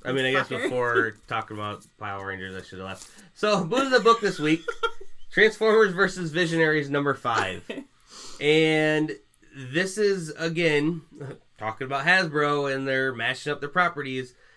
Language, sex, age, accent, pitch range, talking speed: English, male, 20-39, American, 110-150 Hz, 155 wpm